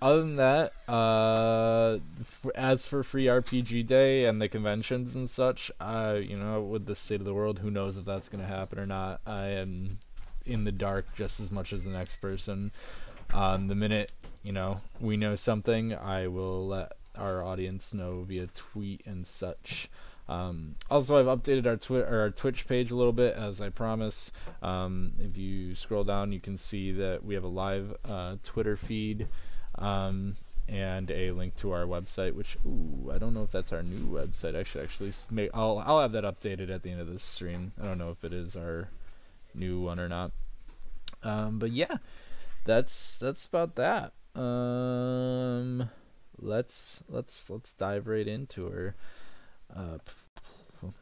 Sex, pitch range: male, 95-115 Hz